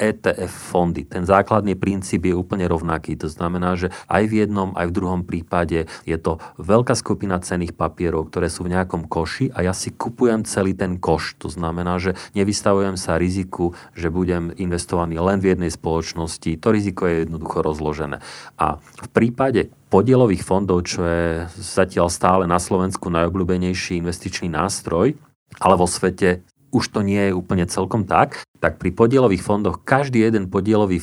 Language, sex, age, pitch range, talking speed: Slovak, male, 40-59, 85-100 Hz, 165 wpm